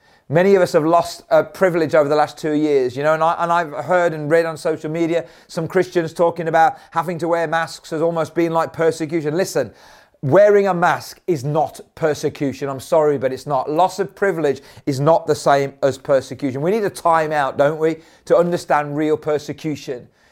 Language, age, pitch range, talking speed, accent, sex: English, 30-49, 150-170 Hz, 200 wpm, British, male